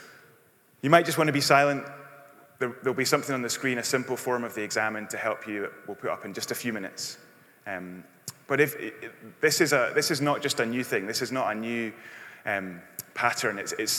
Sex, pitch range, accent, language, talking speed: male, 110-140 Hz, British, English, 225 wpm